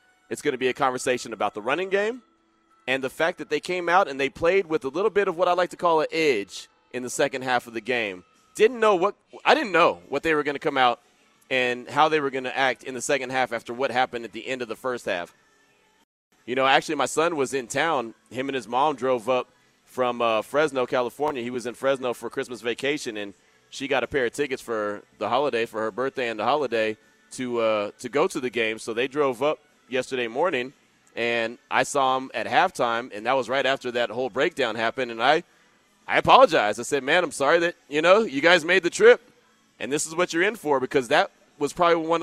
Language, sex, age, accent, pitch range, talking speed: English, male, 30-49, American, 120-155 Hz, 245 wpm